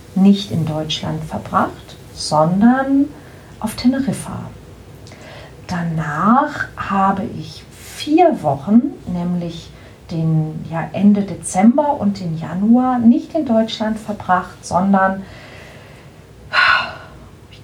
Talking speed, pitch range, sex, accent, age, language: 90 wpm, 155-220 Hz, female, German, 40-59, German